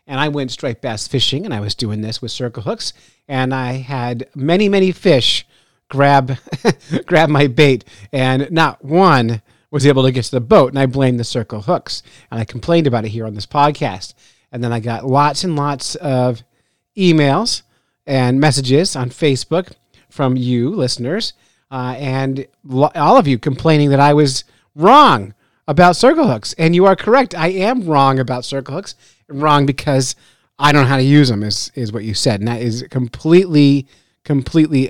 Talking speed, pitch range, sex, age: 185 wpm, 120-150 Hz, male, 40-59